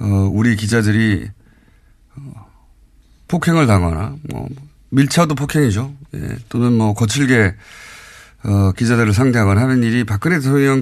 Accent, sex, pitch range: native, male, 105-145 Hz